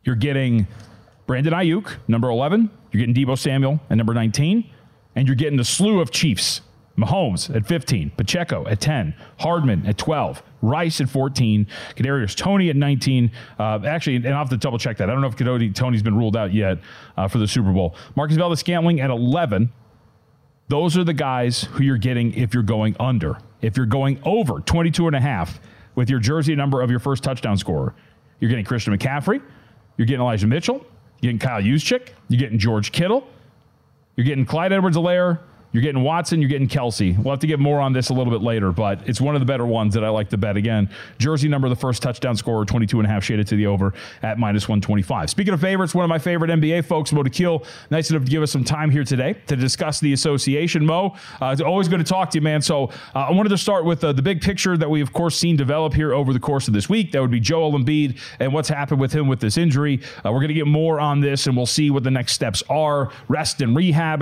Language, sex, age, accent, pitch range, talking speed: English, male, 40-59, American, 115-155 Hz, 235 wpm